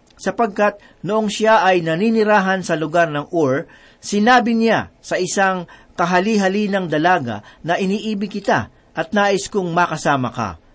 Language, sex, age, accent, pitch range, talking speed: Filipino, male, 50-69, native, 160-210 Hz, 130 wpm